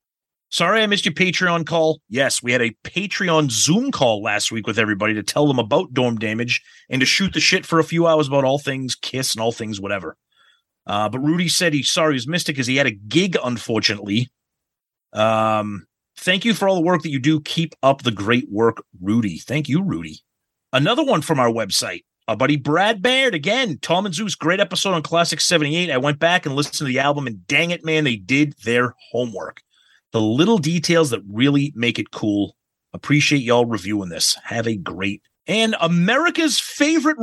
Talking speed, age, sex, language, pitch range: 205 wpm, 30-49, male, English, 120-180 Hz